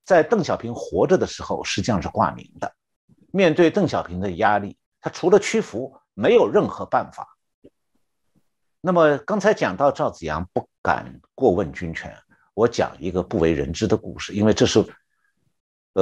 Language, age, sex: Chinese, 60-79, male